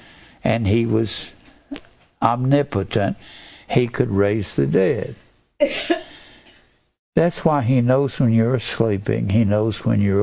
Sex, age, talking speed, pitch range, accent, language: male, 60-79, 115 wpm, 110-150 Hz, American, English